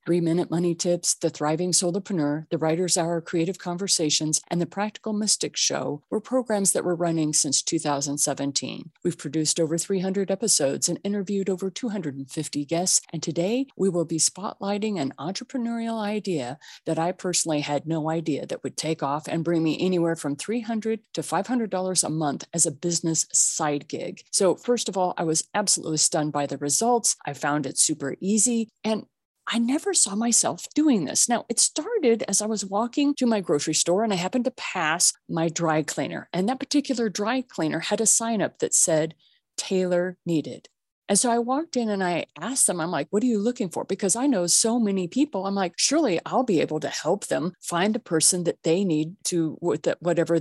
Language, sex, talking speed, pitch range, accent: English, female, 195 wpm, 160-215 Hz, American